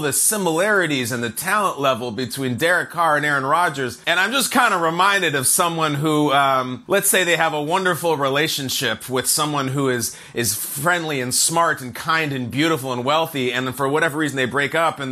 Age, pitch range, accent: 30-49, 145-200 Hz, American